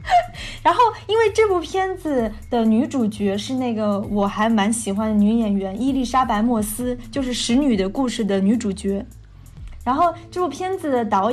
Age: 20-39